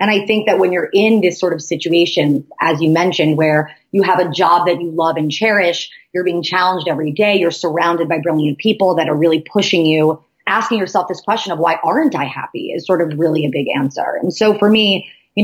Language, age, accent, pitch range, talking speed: English, 30-49, American, 160-195 Hz, 235 wpm